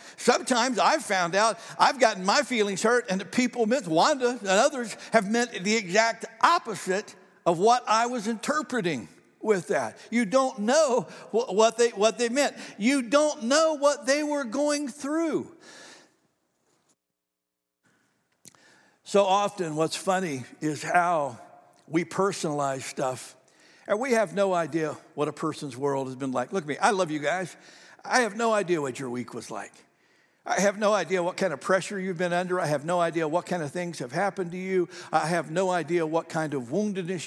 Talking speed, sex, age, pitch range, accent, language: 180 wpm, male, 60-79, 175-235 Hz, American, English